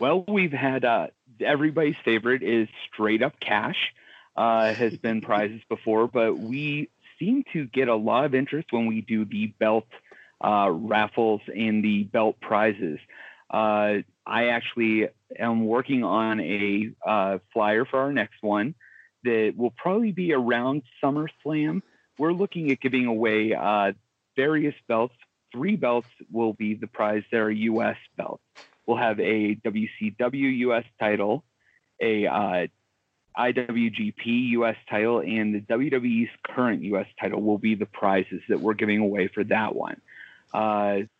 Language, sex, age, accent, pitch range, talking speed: English, male, 30-49, American, 110-130 Hz, 145 wpm